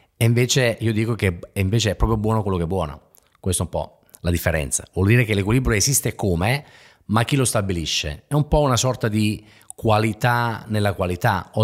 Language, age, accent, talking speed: Italian, 30-49, native, 195 wpm